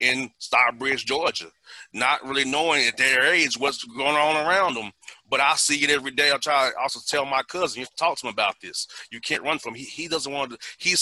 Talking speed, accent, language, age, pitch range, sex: 240 wpm, American, English, 30-49, 135-160 Hz, male